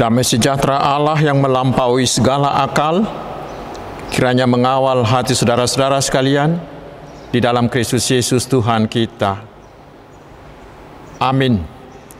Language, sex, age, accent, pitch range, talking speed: Indonesian, male, 50-69, native, 135-175 Hz, 95 wpm